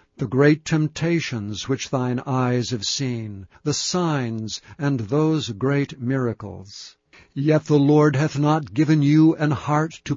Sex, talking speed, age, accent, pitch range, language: male, 140 wpm, 60-79, American, 125-150 Hz, English